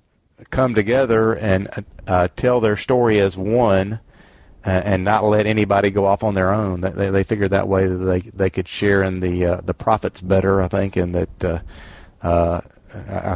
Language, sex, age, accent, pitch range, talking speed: English, male, 40-59, American, 90-105 Hz, 185 wpm